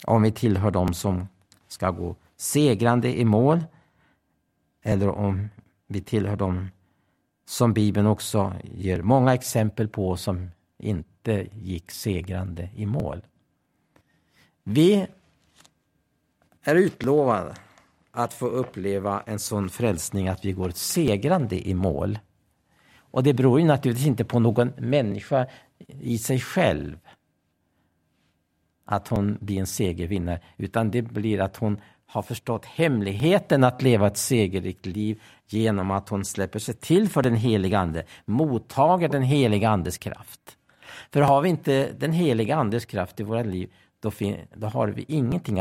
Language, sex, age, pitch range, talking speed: Swedish, male, 50-69, 95-125 Hz, 140 wpm